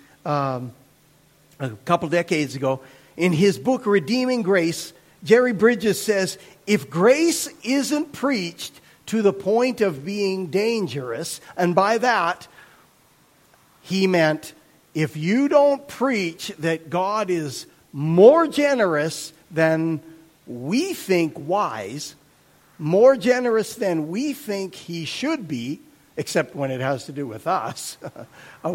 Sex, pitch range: male, 155-220 Hz